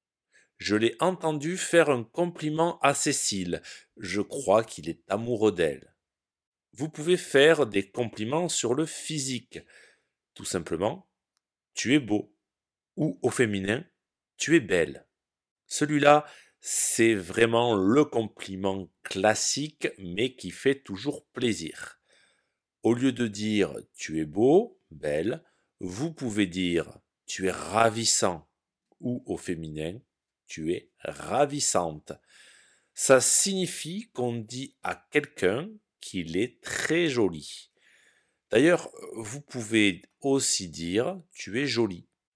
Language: French